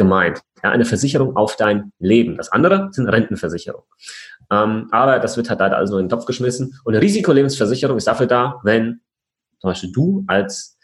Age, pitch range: 30-49, 110-140 Hz